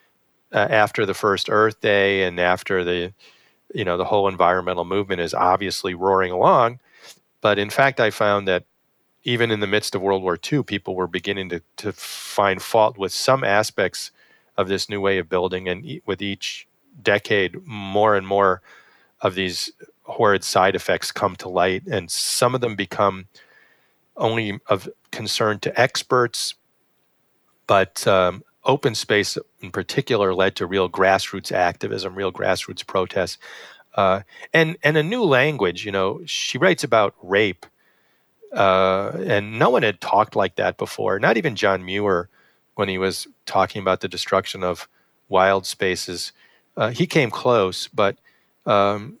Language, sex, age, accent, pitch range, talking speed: English, male, 40-59, American, 95-105 Hz, 155 wpm